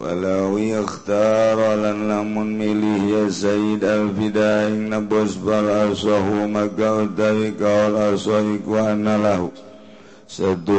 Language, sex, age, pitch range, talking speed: Indonesian, male, 50-69, 100-105 Hz, 110 wpm